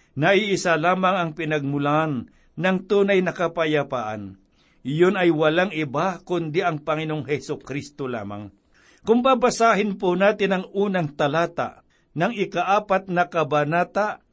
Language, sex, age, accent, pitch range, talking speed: Filipino, male, 60-79, native, 150-190 Hz, 125 wpm